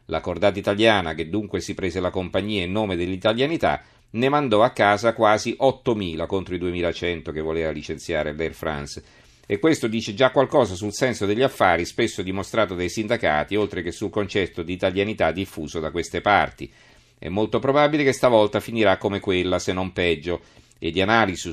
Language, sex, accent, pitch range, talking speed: Italian, male, native, 90-115 Hz, 175 wpm